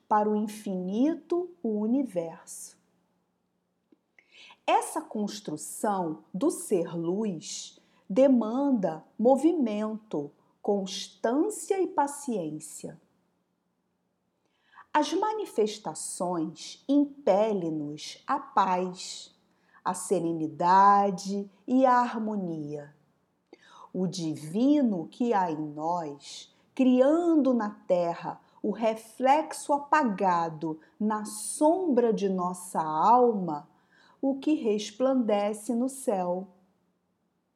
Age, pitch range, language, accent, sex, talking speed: 40-59, 185-275 Hz, Portuguese, Brazilian, female, 75 wpm